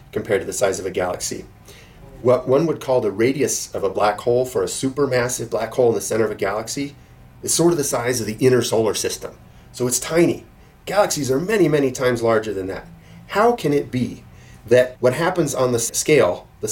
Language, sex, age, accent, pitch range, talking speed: English, male, 30-49, American, 110-150 Hz, 215 wpm